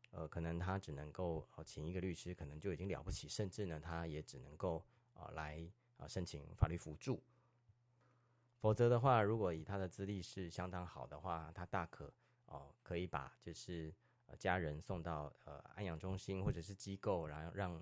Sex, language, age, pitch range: male, Chinese, 30-49, 80-100 Hz